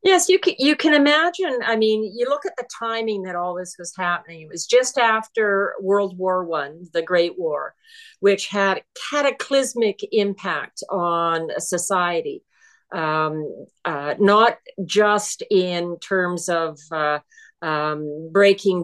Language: English